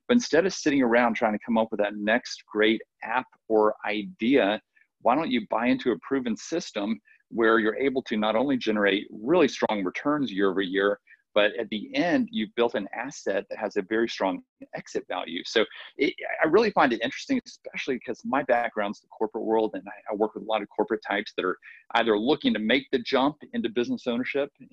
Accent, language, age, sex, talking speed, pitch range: American, English, 40-59, male, 205 wpm, 105-150 Hz